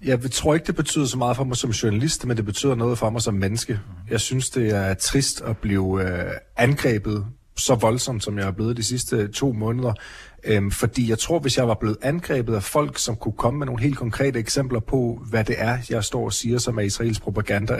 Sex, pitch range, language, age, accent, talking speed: male, 105-135 Hz, Danish, 30-49, native, 235 wpm